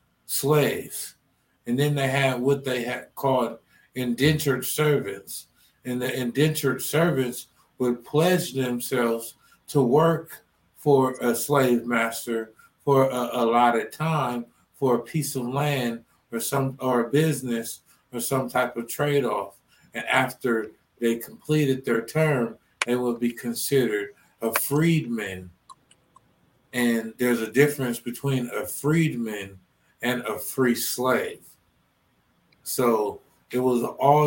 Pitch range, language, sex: 120-140 Hz, English, male